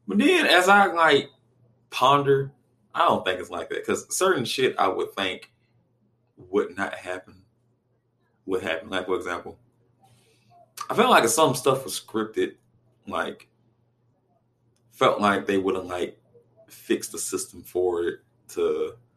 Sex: male